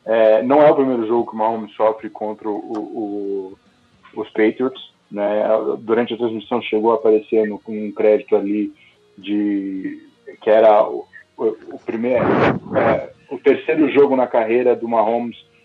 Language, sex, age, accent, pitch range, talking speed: English, male, 20-39, Brazilian, 110-135 Hz, 155 wpm